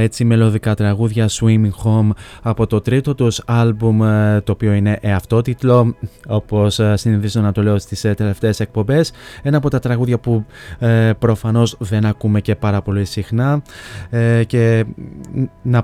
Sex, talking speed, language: male, 140 wpm, Greek